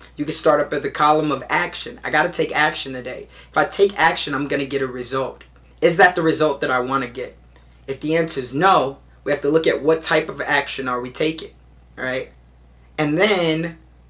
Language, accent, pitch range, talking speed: English, American, 125-150 Hz, 215 wpm